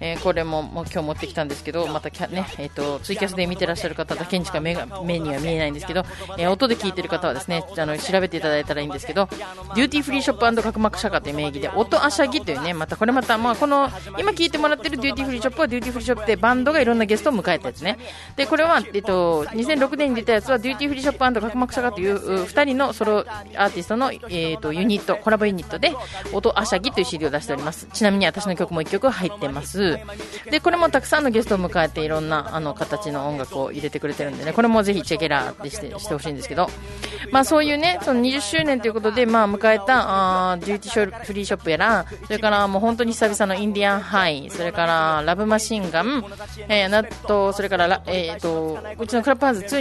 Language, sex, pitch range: Japanese, female, 165-245 Hz